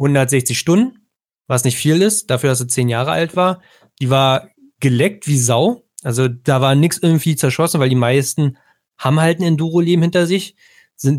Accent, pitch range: German, 130-170 Hz